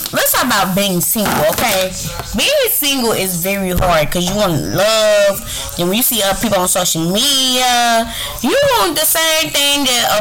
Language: English